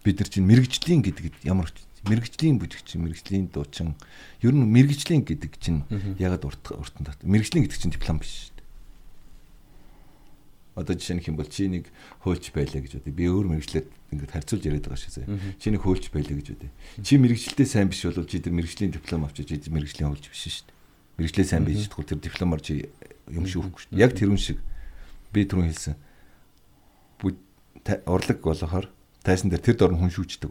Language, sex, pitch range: Korean, male, 75-95 Hz